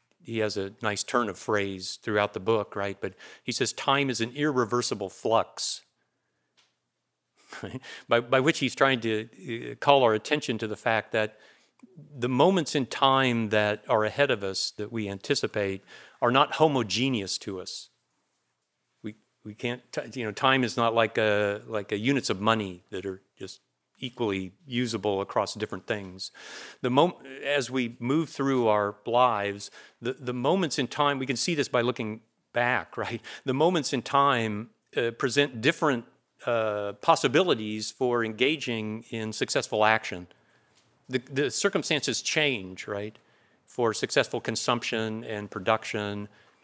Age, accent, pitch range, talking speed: 50-69, American, 105-130 Hz, 155 wpm